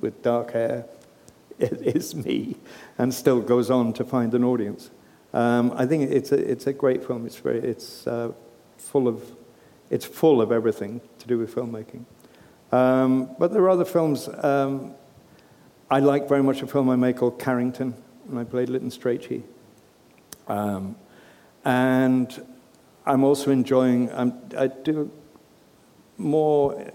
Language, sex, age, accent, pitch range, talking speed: English, male, 60-79, British, 115-130 Hz, 150 wpm